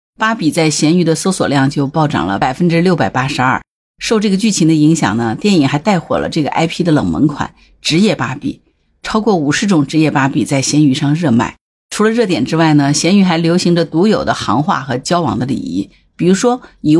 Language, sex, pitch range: Chinese, female, 150-200 Hz